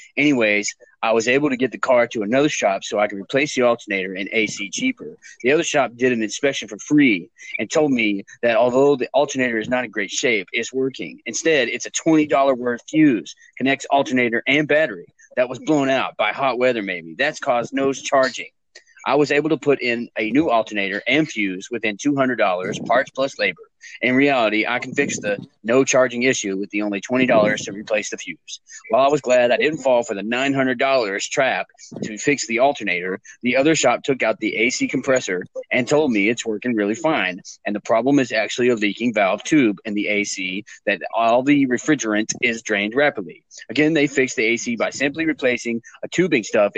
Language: English